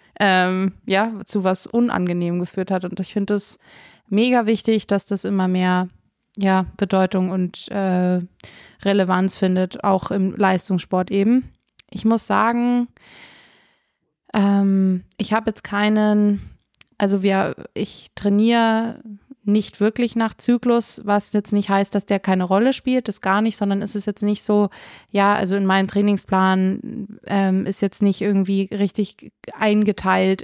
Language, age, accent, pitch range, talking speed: German, 20-39, German, 190-210 Hz, 145 wpm